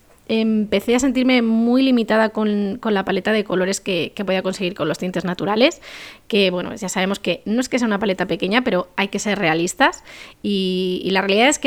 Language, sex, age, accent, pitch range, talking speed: Spanish, female, 20-39, Spanish, 195-240 Hz, 215 wpm